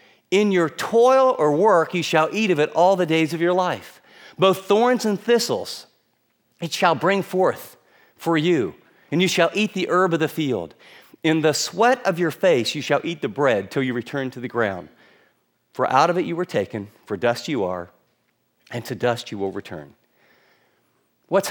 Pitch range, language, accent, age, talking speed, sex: 120-175 Hz, English, American, 40-59, 195 wpm, male